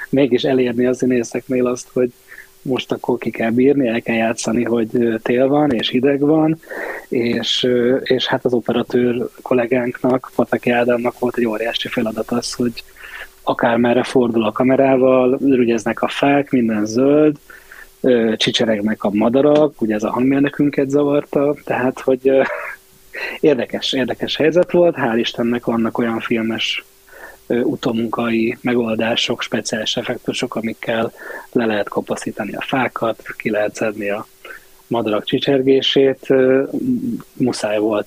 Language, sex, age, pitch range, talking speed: Hungarian, male, 20-39, 115-130 Hz, 130 wpm